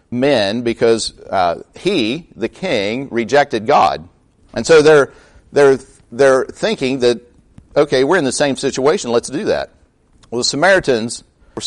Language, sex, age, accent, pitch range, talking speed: English, male, 50-69, American, 110-140 Hz, 145 wpm